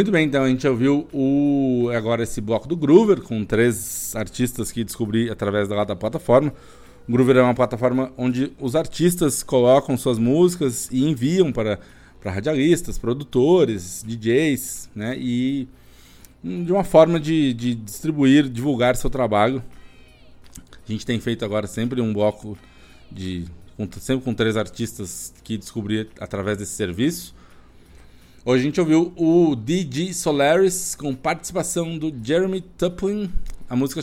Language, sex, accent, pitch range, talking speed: Portuguese, male, Brazilian, 110-140 Hz, 145 wpm